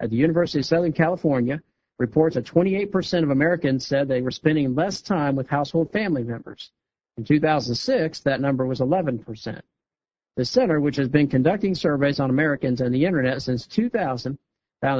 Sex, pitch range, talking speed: male, 130-180 Hz, 170 wpm